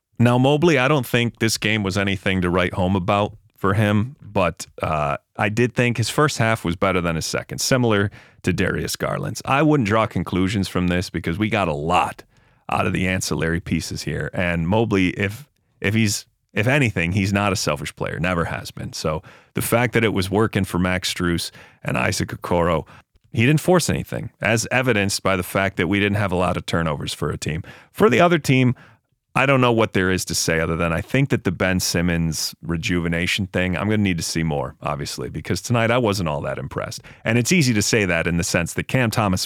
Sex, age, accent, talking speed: male, 30-49, American, 220 wpm